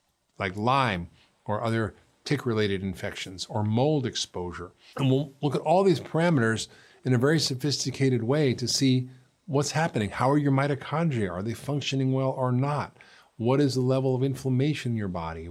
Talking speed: 170 wpm